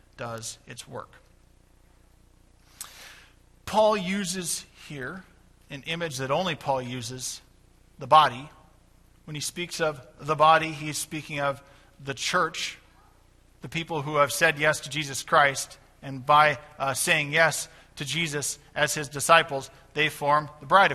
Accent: American